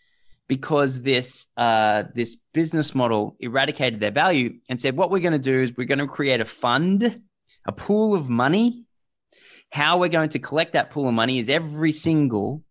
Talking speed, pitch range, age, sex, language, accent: 185 wpm, 115-155 Hz, 20-39, male, English, Australian